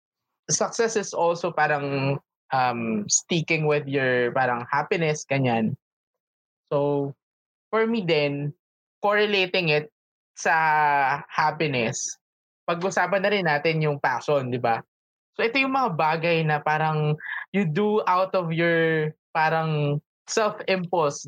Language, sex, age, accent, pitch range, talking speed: Filipino, male, 20-39, native, 150-185 Hz, 115 wpm